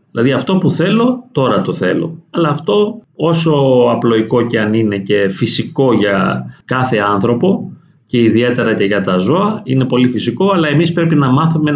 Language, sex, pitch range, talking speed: Greek, male, 115-155 Hz, 170 wpm